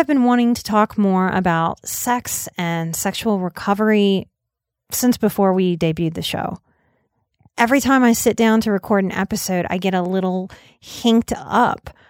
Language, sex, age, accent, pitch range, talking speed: English, female, 30-49, American, 185-245 Hz, 160 wpm